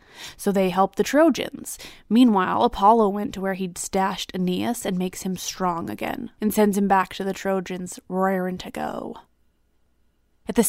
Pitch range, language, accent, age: 185-230 Hz, English, American, 20-39